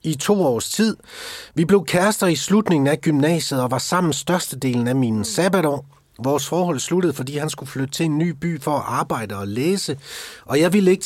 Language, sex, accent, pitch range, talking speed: Danish, male, native, 125-170 Hz, 205 wpm